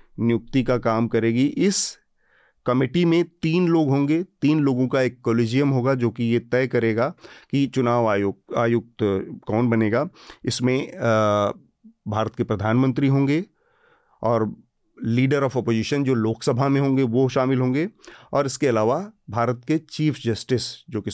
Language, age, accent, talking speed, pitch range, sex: Hindi, 40-59, native, 155 wpm, 115-145 Hz, male